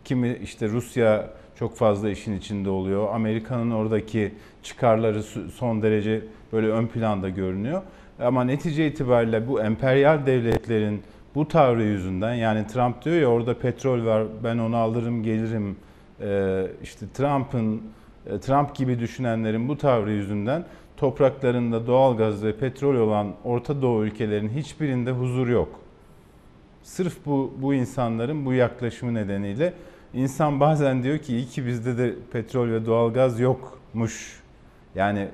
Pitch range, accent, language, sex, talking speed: 110-130 Hz, native, Turkish, male, 130 wpm